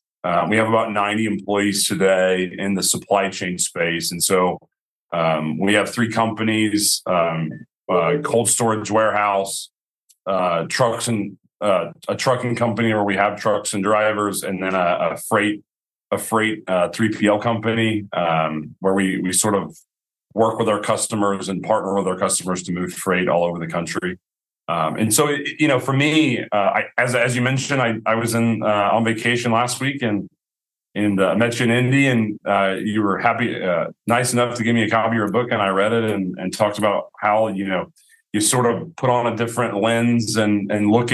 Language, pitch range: English, 100-115 Hz